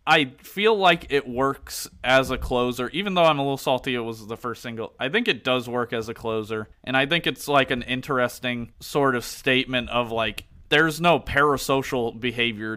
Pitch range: 110-135 Hz